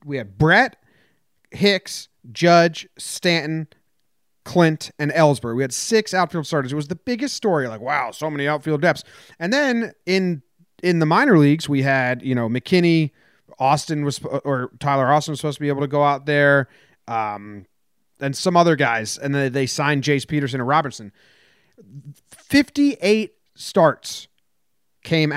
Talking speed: 160 wpm